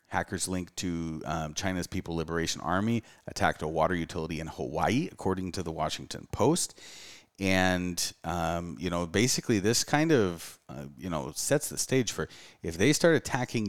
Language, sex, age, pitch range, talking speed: English, male, 30-49, 80-110 Hz, 165 wpm